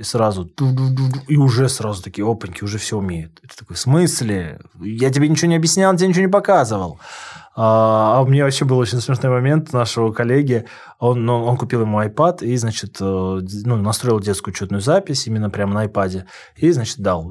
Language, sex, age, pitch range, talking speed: Russian, male, 20-39, 105-145 Hz, 170 wpm